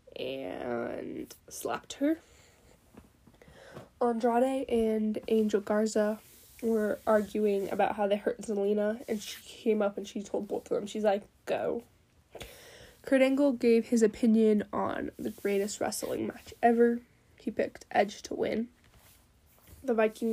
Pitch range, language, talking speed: 215-260 Hz, English, 135 wpm